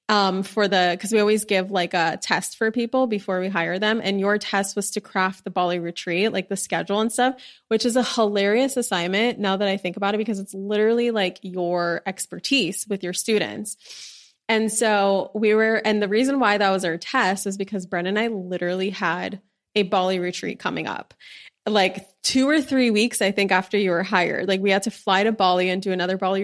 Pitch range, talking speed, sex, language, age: 185-215 Hz, 220 wpm, female, English, 20-39